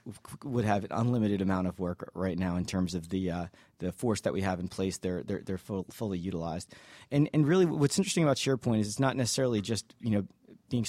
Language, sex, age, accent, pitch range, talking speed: English, male, 30-49, American, 95-115 Hz, 235 wpm